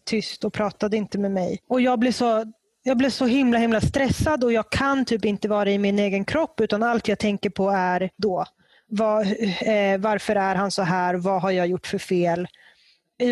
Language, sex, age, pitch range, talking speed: Swedish, female, 20-39, 200-240 Hz, 210 wpm